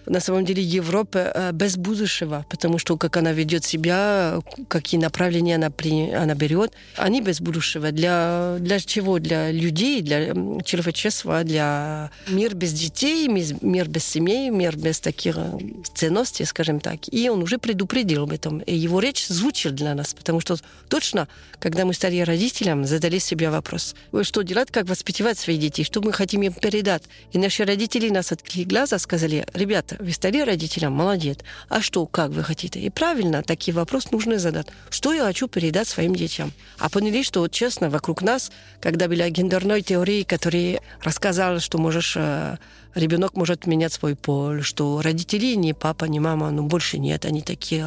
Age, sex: 40-59, female